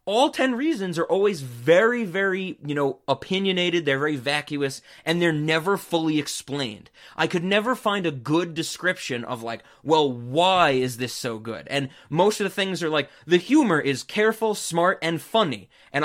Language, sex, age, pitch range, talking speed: English, male, 20-39, 135-180 Hz, 180 wpm